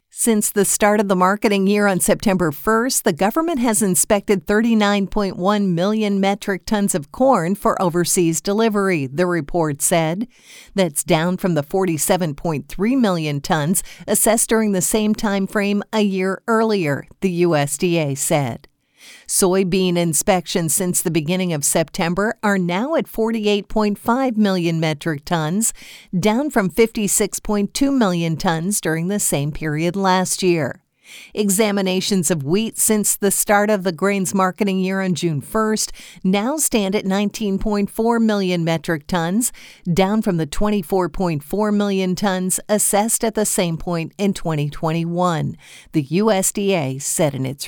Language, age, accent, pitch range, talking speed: English, 50-69, American, 175-210 Hz, 135 wpm